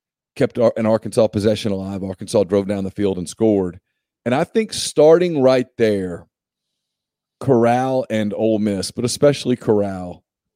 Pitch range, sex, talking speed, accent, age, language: 105-130 Hz, male, 140 wpm, American, 40-59, English